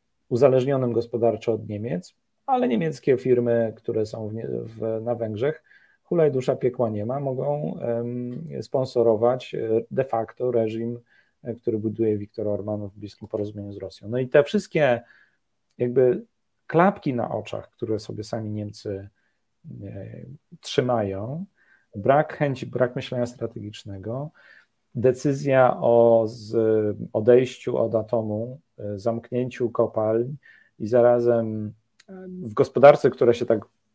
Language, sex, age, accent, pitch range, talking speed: Polish, male, 40-59, native, 110-130 Hz, 120 wpm